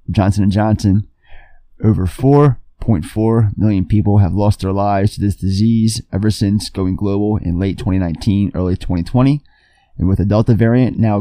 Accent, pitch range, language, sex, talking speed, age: American, 100-130 Hz, English, male, 150 wpm, 20-39